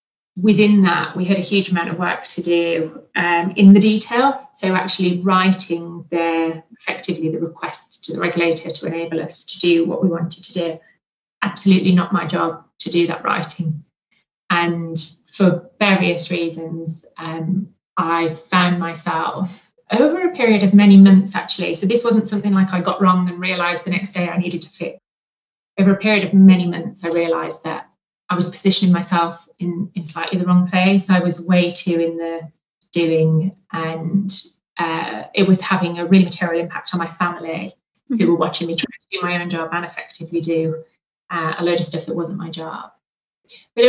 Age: 30-49